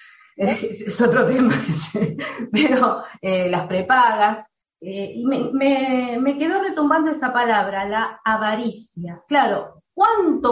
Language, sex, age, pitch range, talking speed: Spanish, female, 30-49, 190-275 Hz, 115 wpm